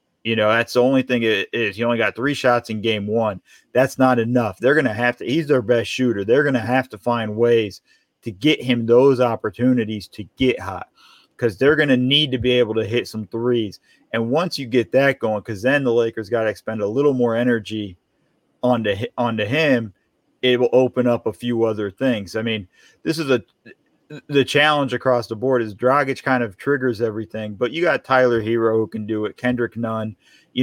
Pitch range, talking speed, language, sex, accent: 115-135 Hz, 220 wpm, English, male, American